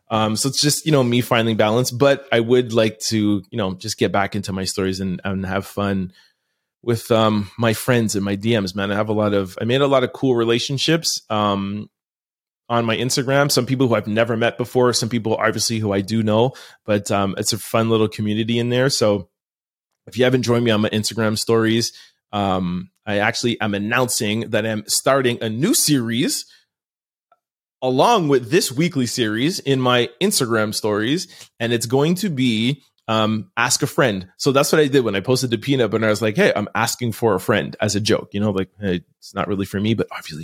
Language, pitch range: English, 100-120 Hz